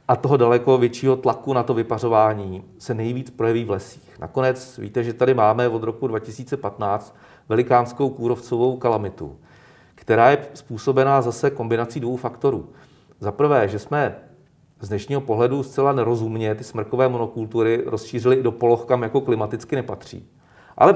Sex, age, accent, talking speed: male, 40-59, native, 150 wpm